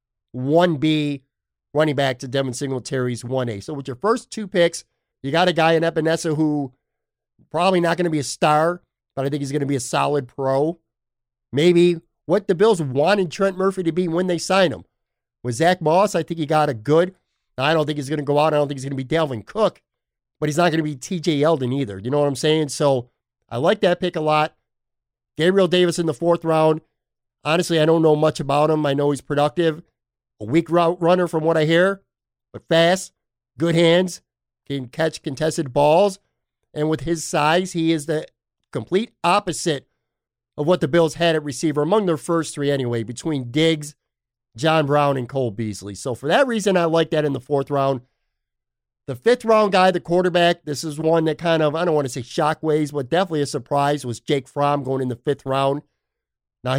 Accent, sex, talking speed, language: American, male, 210 wpm, English